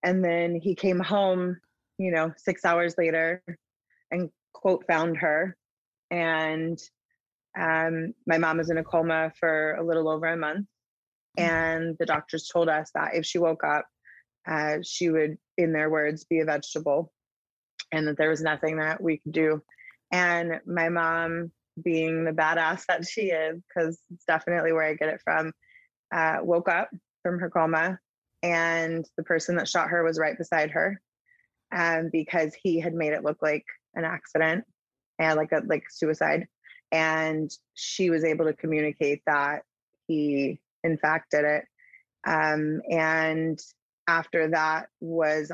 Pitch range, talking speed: 155-170 Hz, 160 wpm